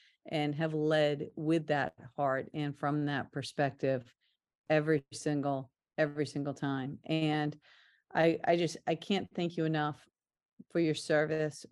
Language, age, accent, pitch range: English, 50-69, American, 145-160 Hz